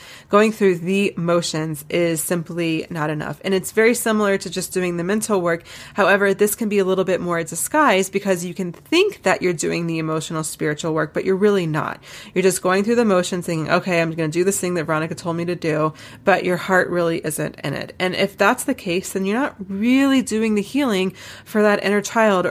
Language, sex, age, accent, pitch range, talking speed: English, female, 20-39, American, 160-195 Hz, 230 wpm